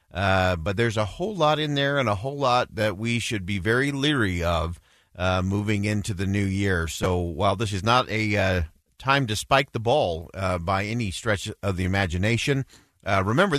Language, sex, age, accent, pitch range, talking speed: English, male, 40-59, American, 95-130 Hz, 205 wpm